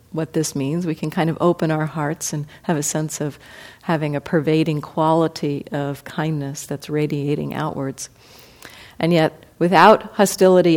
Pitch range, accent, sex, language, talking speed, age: 145-185 Hz, American, female, English, 155 wpm, 50-69